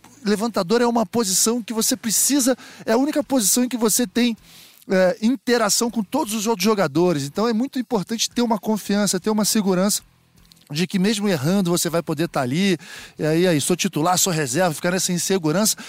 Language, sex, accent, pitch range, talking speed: Portuguese, male, Brazilian, 170-230 Hz, 195 wpm